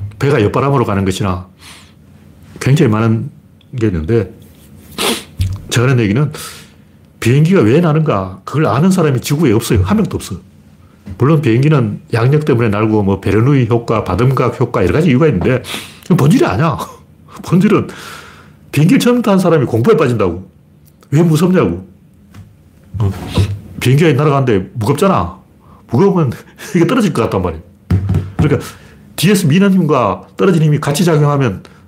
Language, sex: Korean, male